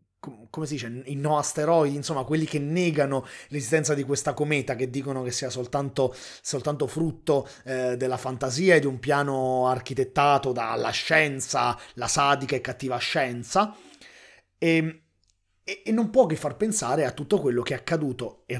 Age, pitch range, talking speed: 30-49, 125-160 Hz, 165 wpm